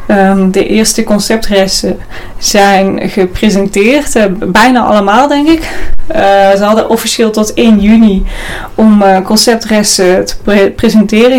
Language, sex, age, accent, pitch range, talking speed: Dutch, female, 20-39, Dutch, 195-225 Hz, 115 wpm